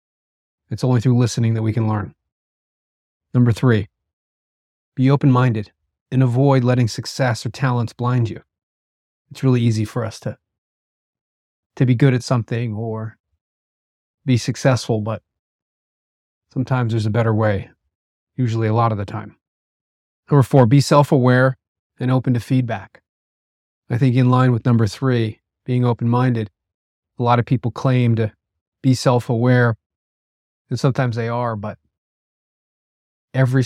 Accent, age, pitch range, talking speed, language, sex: American, 30-49, 105-125 Hz, 135 wpm, English, male